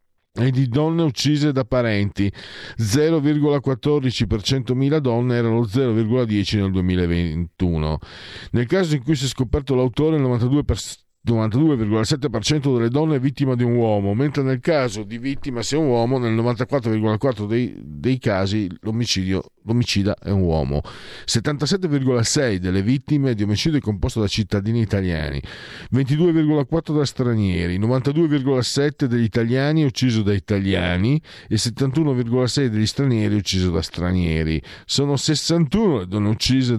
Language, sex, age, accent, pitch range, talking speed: Italian, male, 40-59, native, 100-140 Hz, 125 wpm